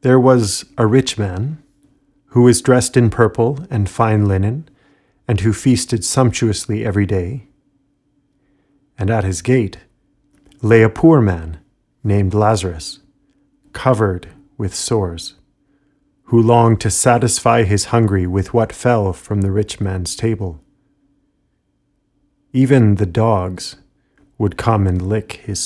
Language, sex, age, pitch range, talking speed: English, male, 40-59, 100-135 Hz, 125 wpm